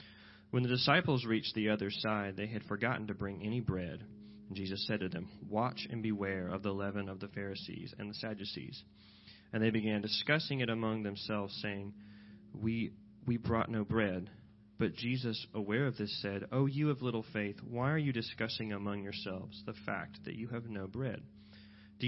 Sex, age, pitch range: male, 30-49, 105-120 Hz